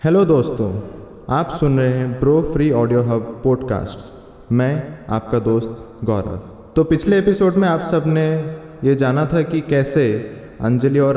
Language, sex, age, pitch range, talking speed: Hindi, male, 20-39, 115-150 Hz, 155 wpm